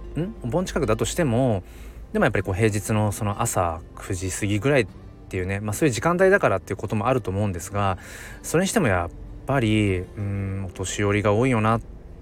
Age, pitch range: 20-39, 95-120 Hz